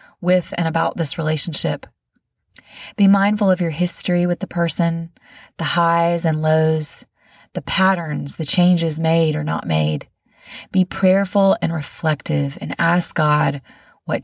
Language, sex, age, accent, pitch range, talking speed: English, female, 20-39, American, 140-180 Hz, 140 wpm